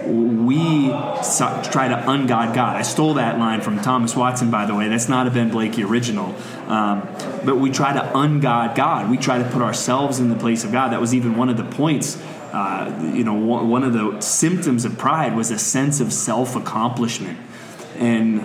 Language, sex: English, male